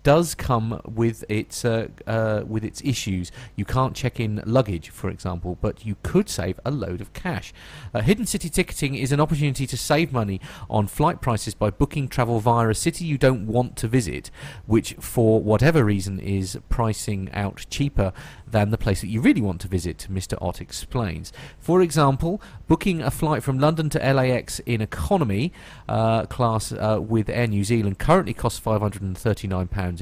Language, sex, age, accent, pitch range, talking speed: English, male, 40-59, British, 100-135 Hz, 180 wpm